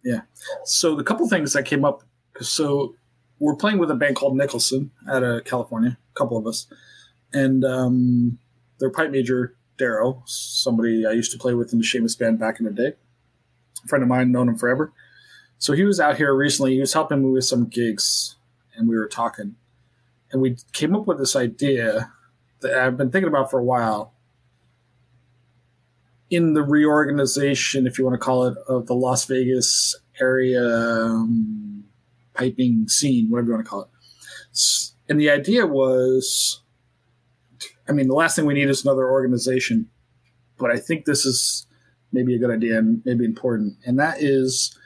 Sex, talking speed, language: male, 180 wpm, English